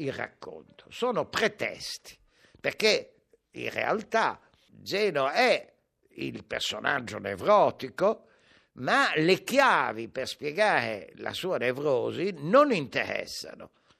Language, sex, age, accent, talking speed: Italian, male, 60-79, native, 90 wpm